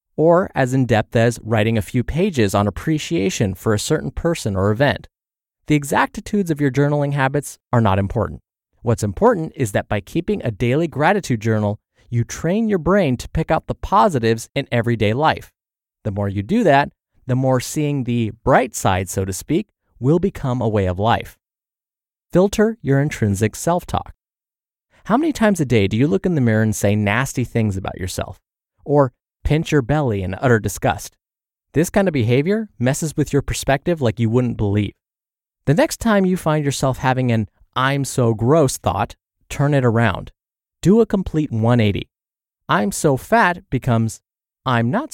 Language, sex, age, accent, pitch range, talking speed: English, male, 30-49, American, 110-155 Hz, 175 wpm